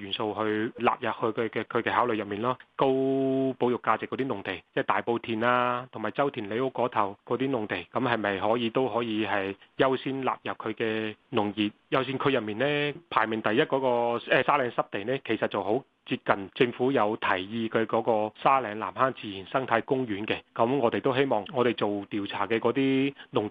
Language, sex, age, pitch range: Chinese, male, 30-49, 110-130 Hz